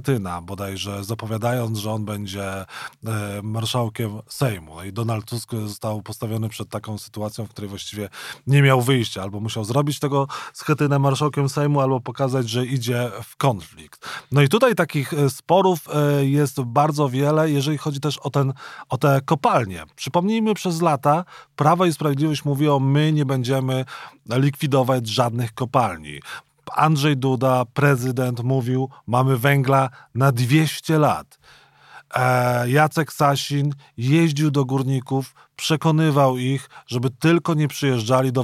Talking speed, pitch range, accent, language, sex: 130 wpm, 115-145 Hz, native, Polish, male